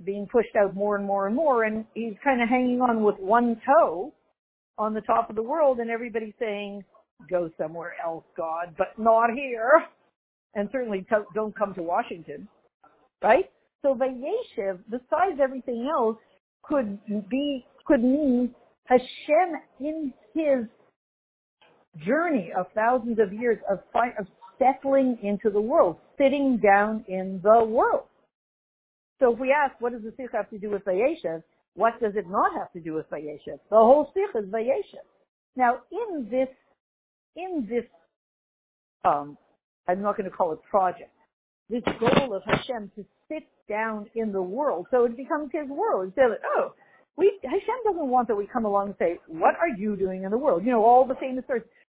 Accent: American